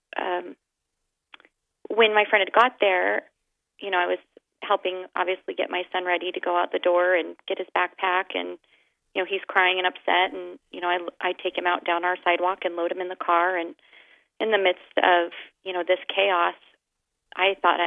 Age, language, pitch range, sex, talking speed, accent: 30-49, English, 175-190 Hz, female, 205 wpm, American